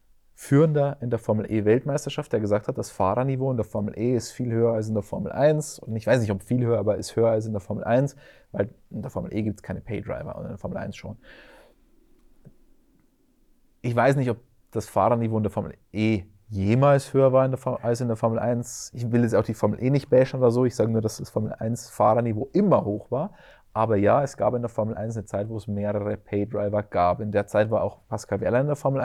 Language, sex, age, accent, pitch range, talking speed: German, male, 30-49, German, 105-130 Hz, 240 wpm